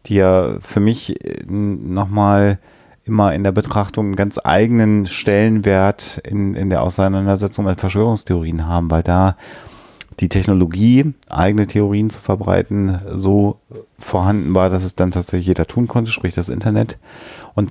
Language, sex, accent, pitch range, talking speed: German, male, German, 85-100 Hz, 145 wpm